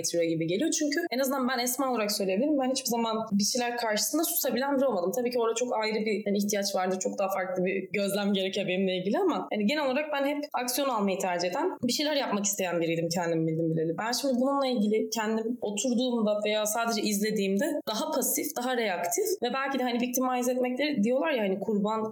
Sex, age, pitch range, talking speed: female, 20-39, 185-255 Hz, 205 wpm